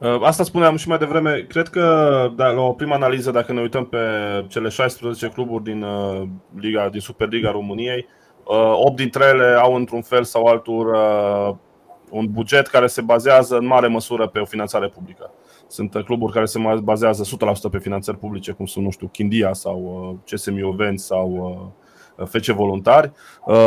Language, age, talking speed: Romanian, 20-39, 160 wpm